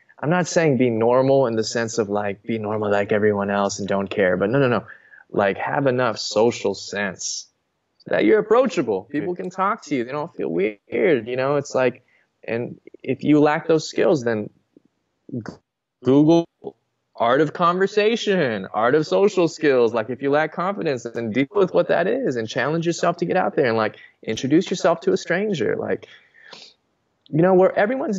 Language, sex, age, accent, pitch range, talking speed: English, male, 20-39, American, 110-170 Hz, 185 wpm